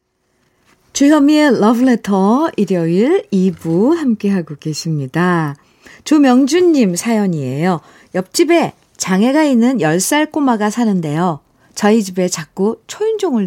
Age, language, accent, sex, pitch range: 50-69, Korean, native, female, 165-235 Hz